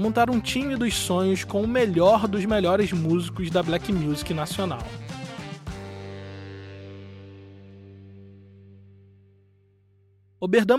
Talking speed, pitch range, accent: 90 wpm, 160-210 Hz, Brazilian